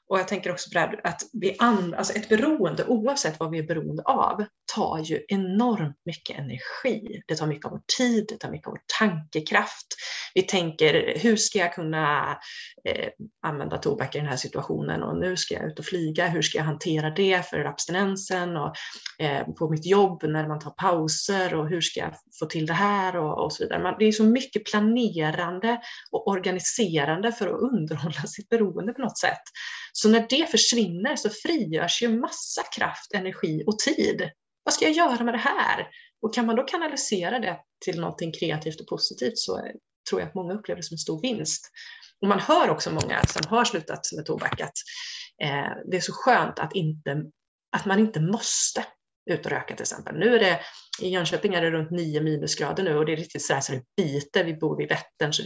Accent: native